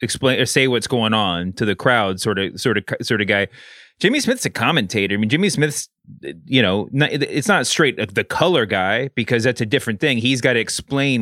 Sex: male